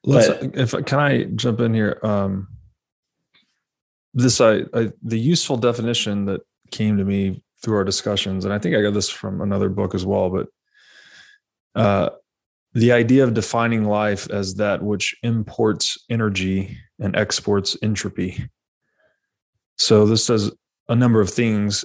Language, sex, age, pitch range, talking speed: English, male, 20-39, 100-115 Hz, 150 wpm